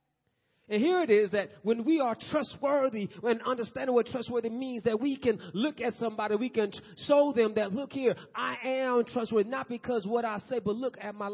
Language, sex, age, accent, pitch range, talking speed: English, male, 30-49, American, 160-230 Hz, 205 wpm